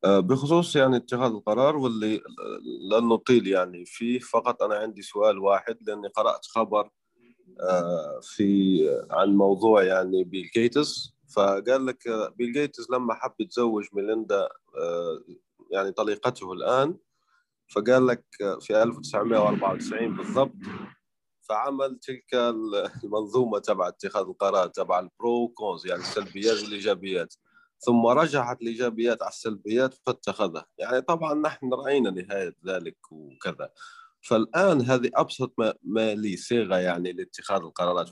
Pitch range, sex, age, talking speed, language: 100-130 Hz, male, 30-49, 115 wpm, Arabic